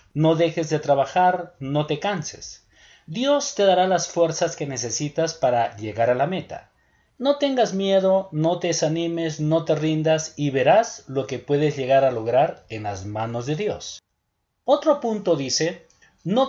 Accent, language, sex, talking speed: Mexican, Spanish, male, 165 wpm